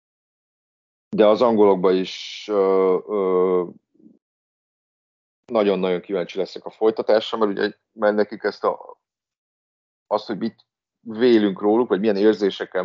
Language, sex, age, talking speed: Hungarian, male, 40-59, 115 wpm